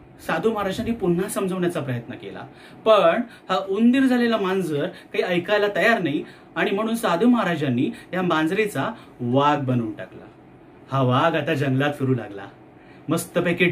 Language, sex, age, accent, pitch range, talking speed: Marathi, male, 30-49, native, 160-230 Hz, 135 wpm